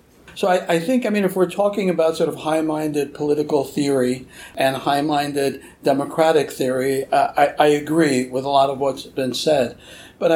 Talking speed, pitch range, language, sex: 180 wpm, 145-180 Hz, English, male